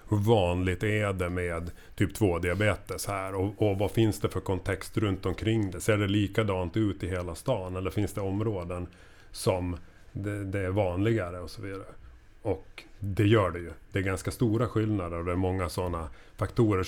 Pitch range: 95-115 Hz